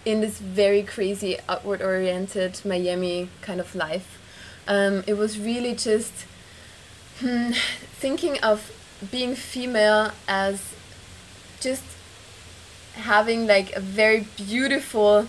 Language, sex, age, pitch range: English, female, 20-39, 195-230 Hz